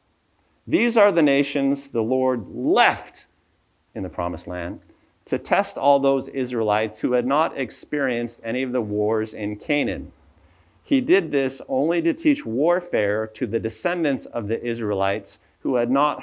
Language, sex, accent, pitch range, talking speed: English, male, American, 100-140 Hz, 155 wpm